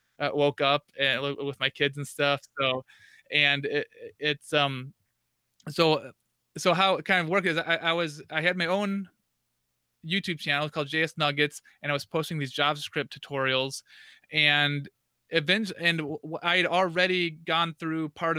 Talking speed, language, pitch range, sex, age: 165 wpm, English, 140-160 Hz, male, 30-49